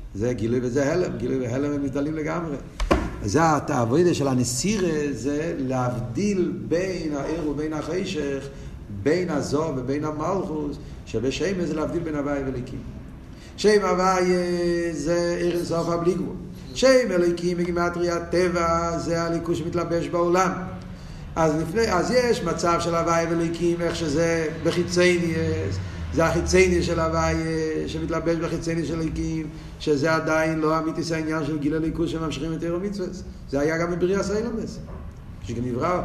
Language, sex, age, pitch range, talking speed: Hebrew, male, 50-69, 140-175 Hz, 135 wpm